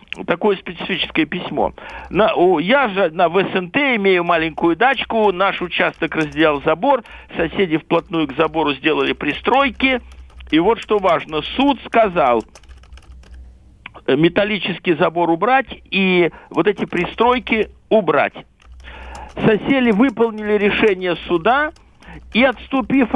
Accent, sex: native, male